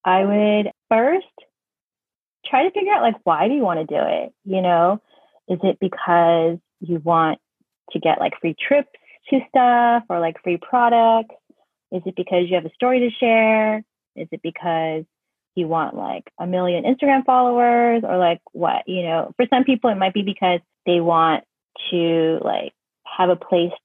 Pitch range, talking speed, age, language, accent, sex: 170-230 Hz, 180 wpm, 20-39, English, American, female